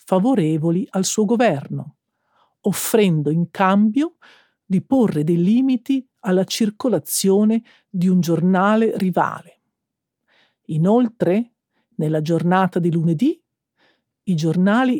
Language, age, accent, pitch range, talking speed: Italian, 50-69, native, 175-235 Hz, 95 wpm